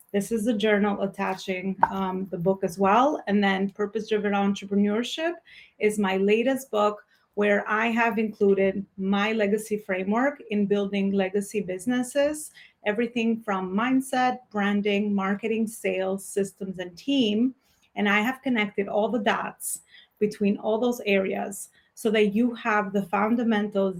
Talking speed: 140 wpm